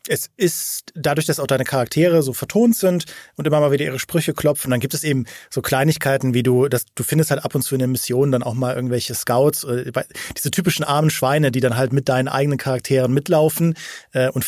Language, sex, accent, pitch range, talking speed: German, male, German, 135-165 Hz, 225 wpm